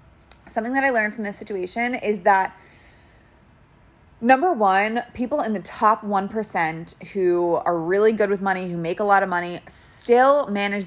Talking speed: 165 wpm